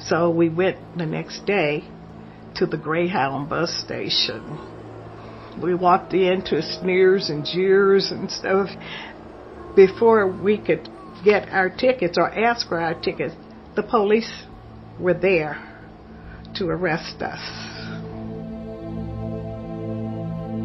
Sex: female